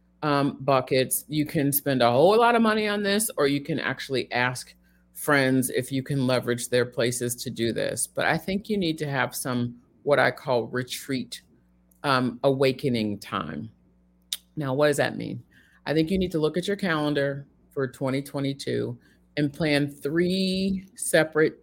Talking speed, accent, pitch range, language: 170 wpm, American, 125-155 Hz, English